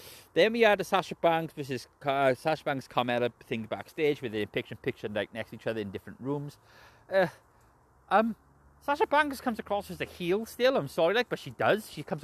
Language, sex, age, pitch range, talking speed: English, male, 30-49, 125-175 Hz, 210 wpm